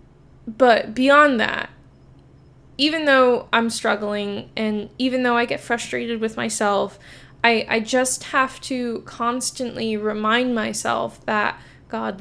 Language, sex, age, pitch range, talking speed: English, female, 10-29, 210-245 Hz, 125 wpm